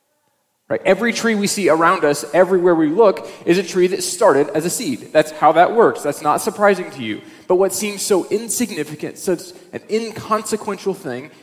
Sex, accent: male, American